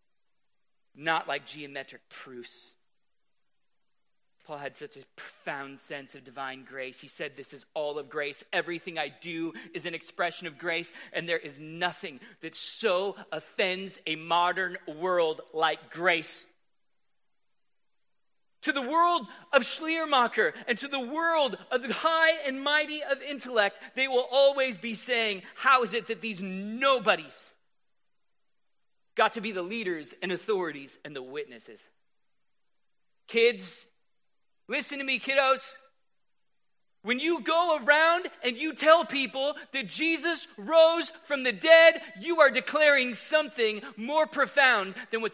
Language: English